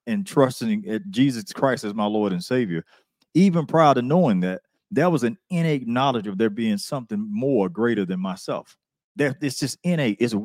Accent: American